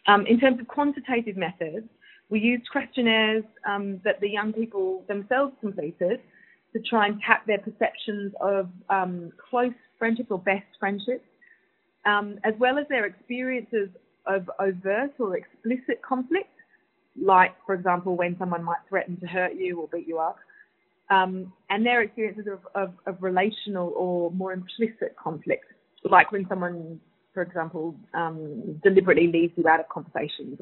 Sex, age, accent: female, 20-39, British